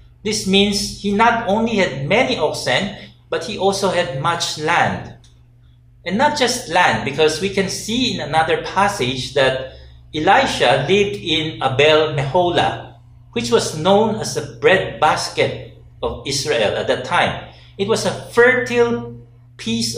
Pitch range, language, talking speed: 120-185 Hz, English, 140 wpm